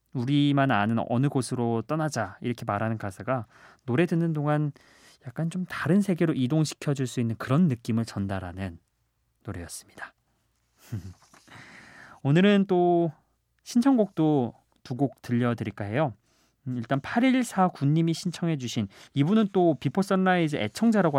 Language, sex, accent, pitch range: Korean, male, native, 115-165 Hz